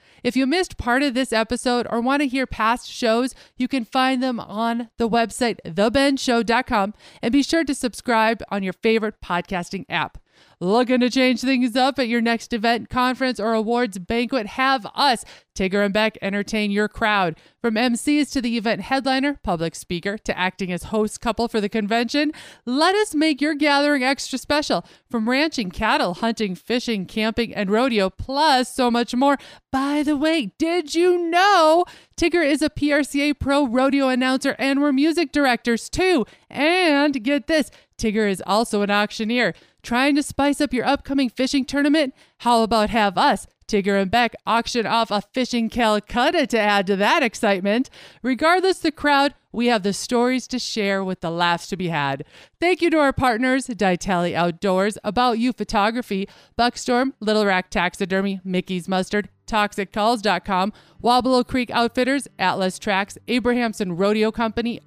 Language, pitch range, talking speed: English, 205-270 Hz, 165 wpm